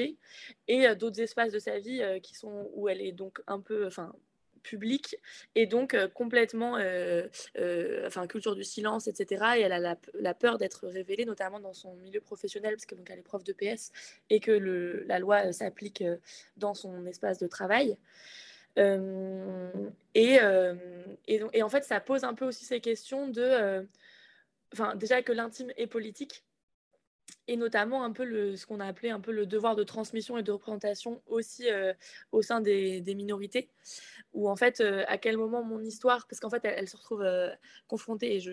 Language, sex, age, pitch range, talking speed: French, female, 20-39, 195-235 Hz, 190 wpm